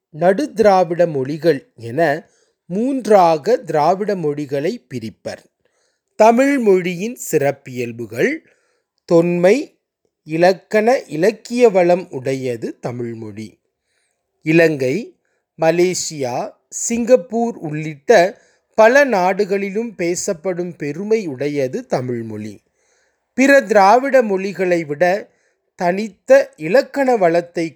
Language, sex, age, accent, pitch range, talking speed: Tamil, male, 30-49, native, 140-220 Hz, 70 wpm